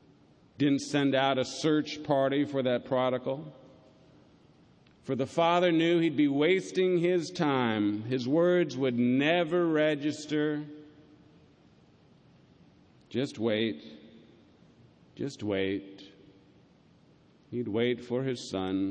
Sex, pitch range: male, 100-135 Hz